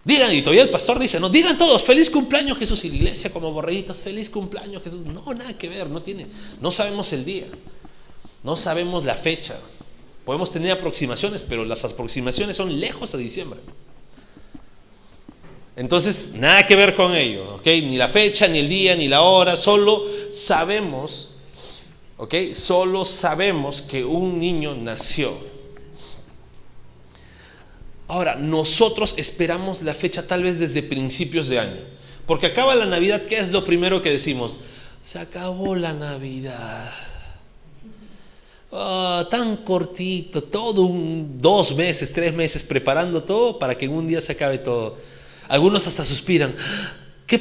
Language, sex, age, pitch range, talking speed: Spanish, male, 40-59, 145-200 Hz, 150 wpm